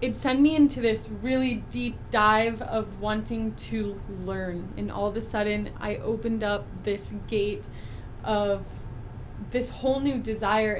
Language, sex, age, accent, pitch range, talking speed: English, female, 20-39, American, 195-225 Hz, 150 wpm